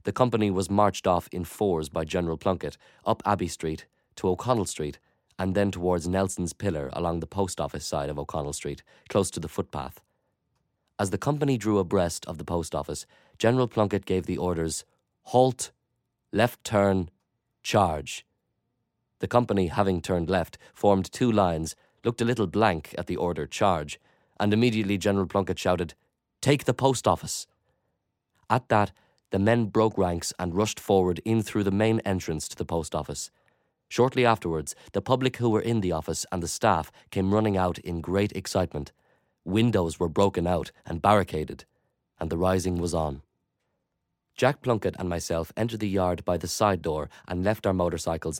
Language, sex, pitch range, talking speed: English, male, 85-105 Hz, 170 wpm